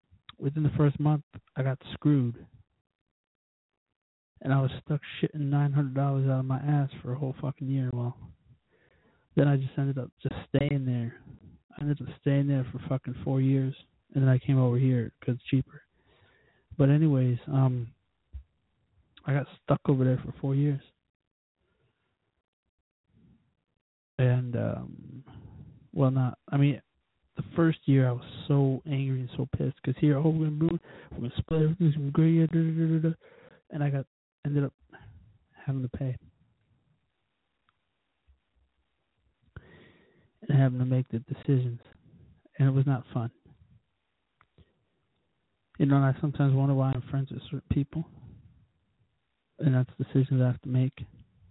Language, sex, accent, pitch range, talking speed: English, male, American, 125-145 Hz, 150 wpm